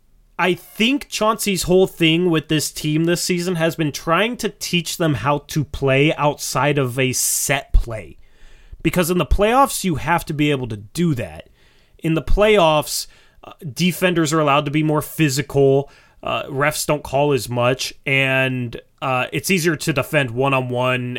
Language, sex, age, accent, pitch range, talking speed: English, male, 30-49, American, 120-160 Hz, 165 wpm